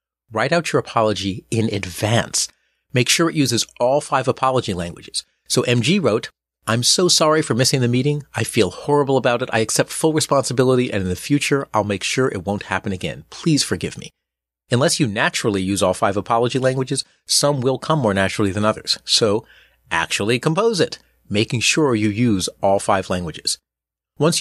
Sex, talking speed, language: male, 180 wpm, English